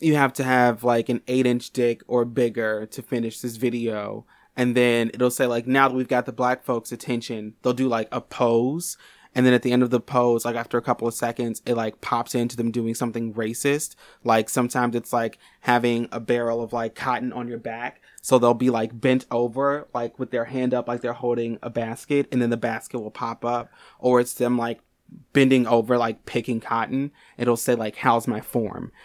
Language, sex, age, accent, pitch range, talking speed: English, male, 20-39, American, 115-130 Hz, 220 wpm